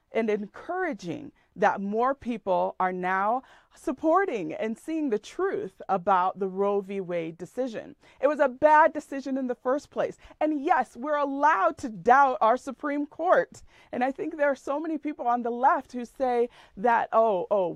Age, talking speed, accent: 40-59, 175 wpm, American